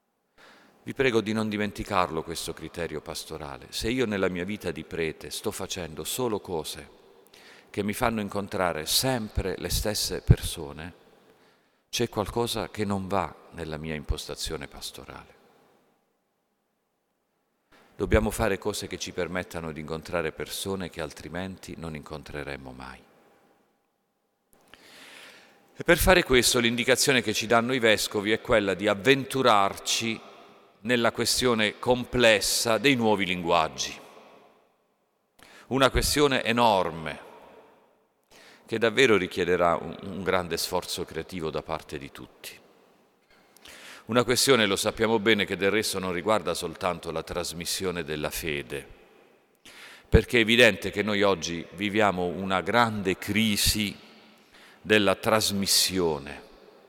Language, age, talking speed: Italian, 50-69, 120 wpm